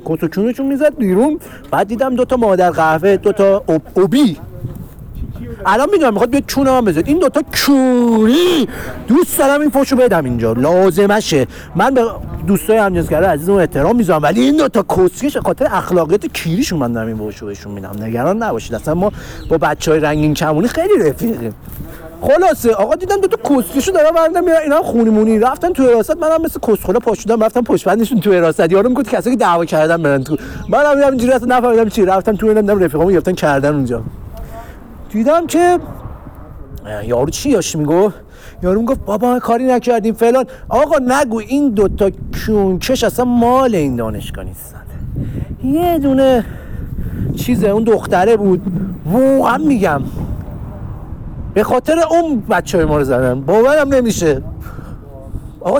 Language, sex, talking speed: Persian, male, 165 wpm